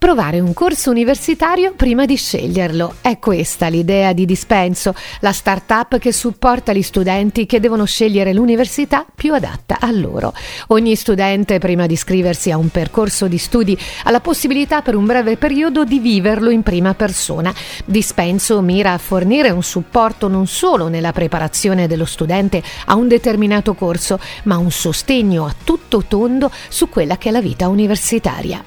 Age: 50-69